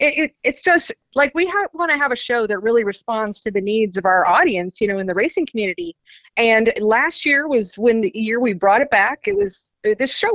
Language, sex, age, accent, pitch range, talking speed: English, female, 30-49, American, 200-265 Hz, 225 wpm